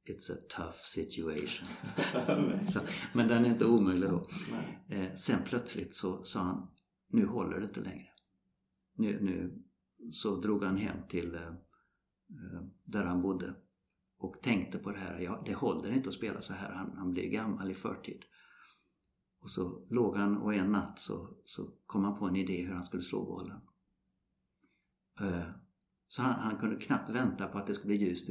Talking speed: 170 wpm